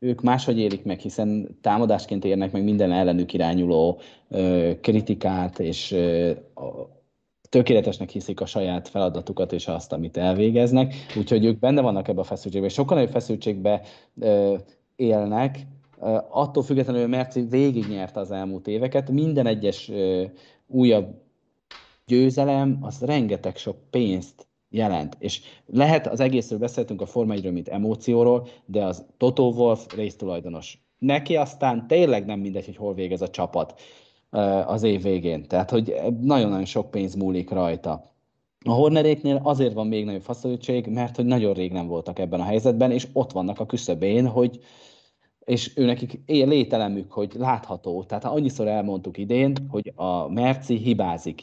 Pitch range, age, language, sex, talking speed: 95-125 Hz, 30-49, Hungarian, male, 140 wpm